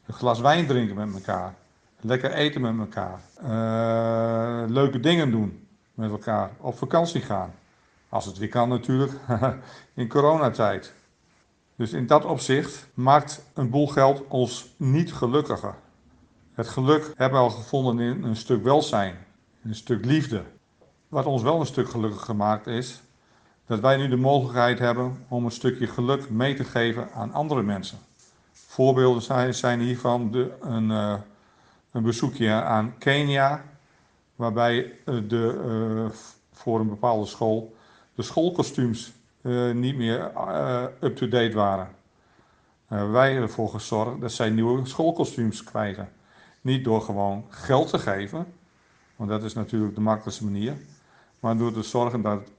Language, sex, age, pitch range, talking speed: Dutch, male, 50-69, 110-130 Hz, 140 wpm